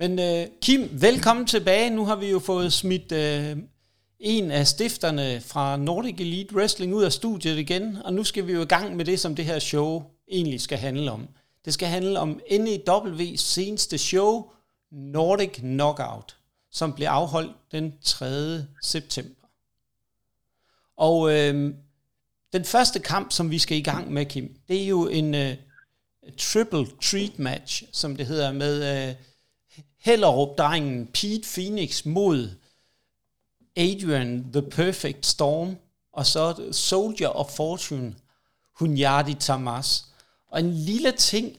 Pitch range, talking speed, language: 140-190 Hz, 135 wpm, Danish